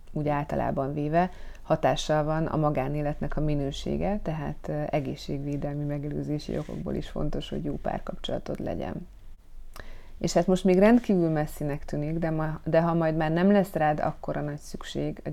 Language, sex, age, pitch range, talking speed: Hungarian, female, 30-49, 145-165 Hz, 155 wpm